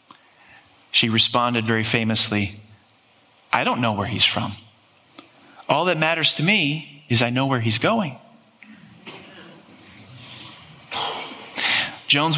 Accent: American